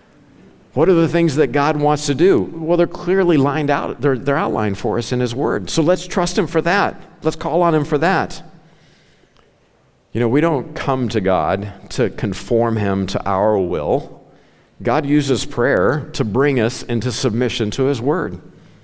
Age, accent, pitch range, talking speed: 50-69, American, 105-150 Hz, 185 wpm